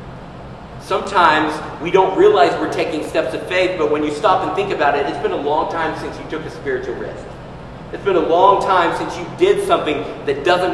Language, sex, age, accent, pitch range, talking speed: English, male, 40-59, American, 155-230 Hz, 220 wpm